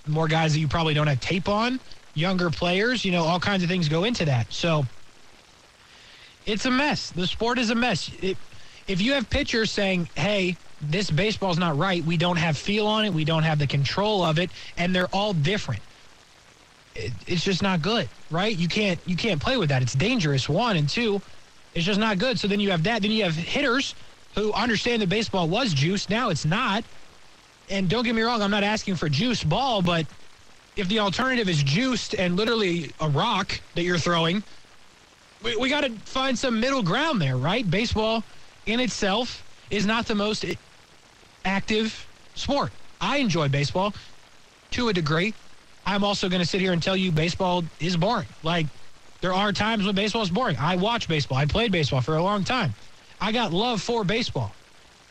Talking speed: 195 wpm